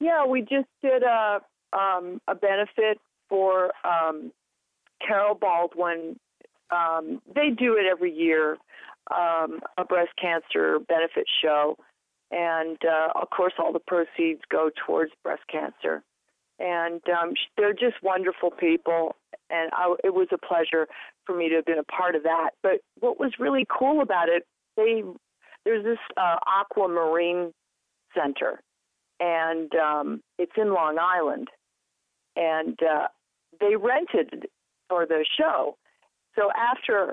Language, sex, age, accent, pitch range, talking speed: English, female, 40-59, American, 165-215 Hz, 135 wpm